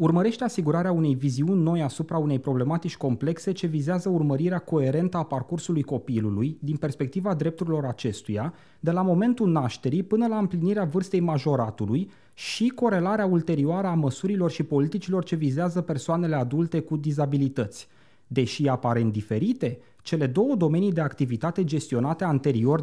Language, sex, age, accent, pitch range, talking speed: Romanian, male, 30-49, native, 145-200 Hz, 135 wpm